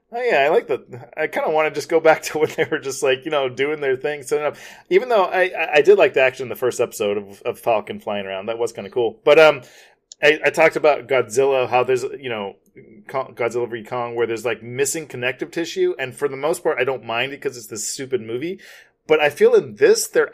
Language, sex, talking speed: English, male, 255 wpm